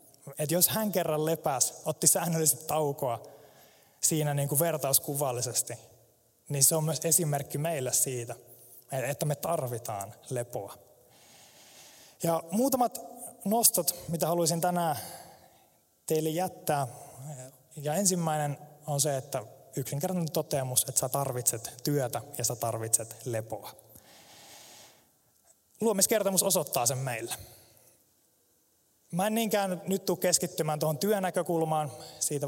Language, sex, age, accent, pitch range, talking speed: Finnish, male, 20-39, native, 130-170 Hz, 105 wpm